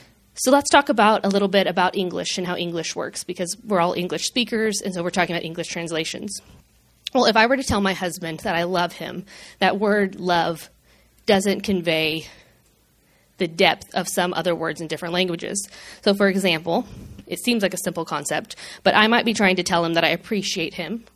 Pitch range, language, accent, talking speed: 180-210 Hz, English, American, 205 wpm